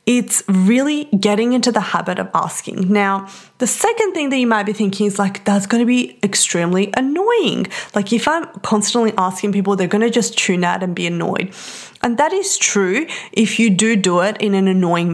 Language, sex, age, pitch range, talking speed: English, female, 20-39, 195-230 Hz, 205 wpm